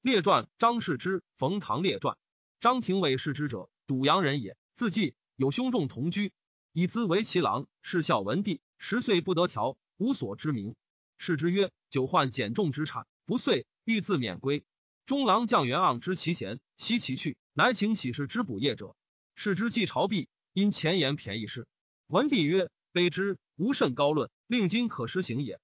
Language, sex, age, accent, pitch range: Chinese, male, 30-49, native, 145-210 Hz